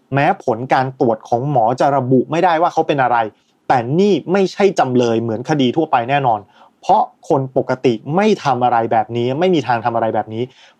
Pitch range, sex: 120-175 Hz, male